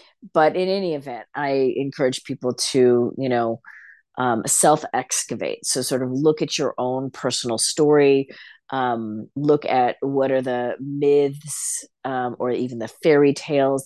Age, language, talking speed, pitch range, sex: 40-59, English, 150 wpm, 125-140 Hz, female